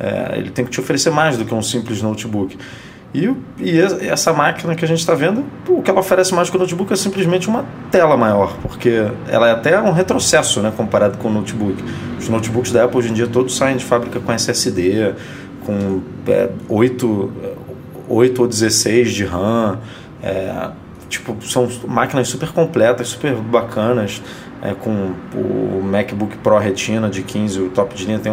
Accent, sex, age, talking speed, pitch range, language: Brazilian, male, 20-39, 175 wpm, 105-140 Hz, Portuguese